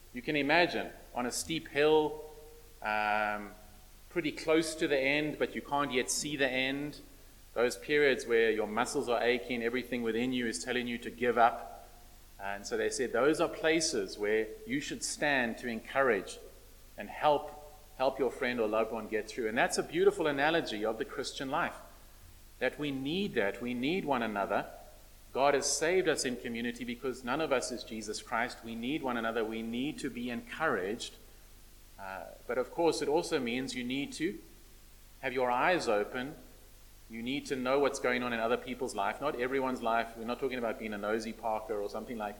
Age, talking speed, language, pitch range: 30-49, 195 wpm, English, 115-150 Hz